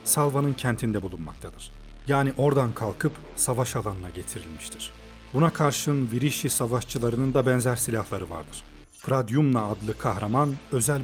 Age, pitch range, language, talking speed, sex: 40-59, 100-130 Hz, Turkish, 115 wpm, male